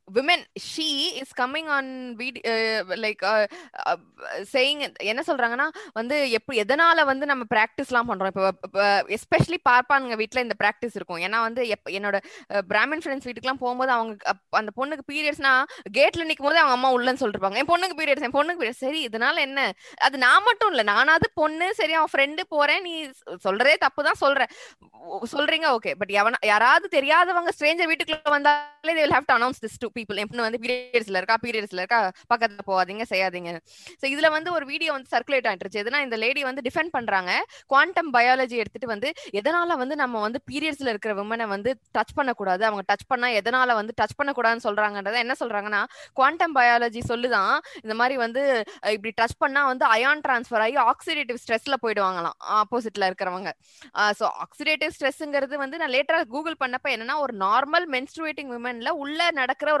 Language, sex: Tamil, female